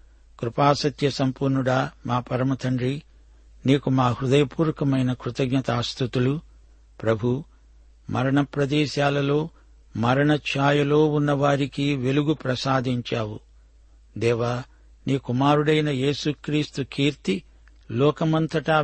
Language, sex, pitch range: Telugu, male, 120-145 Hz